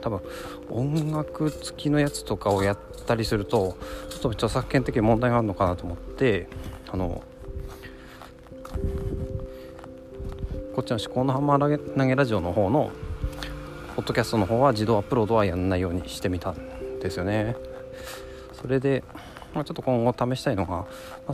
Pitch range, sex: 85-125 Hz, male